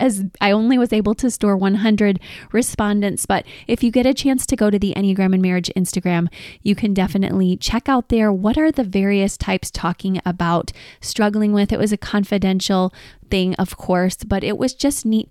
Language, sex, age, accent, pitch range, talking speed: English, female, 20-39, American, 180-215 Hz, 195 wpm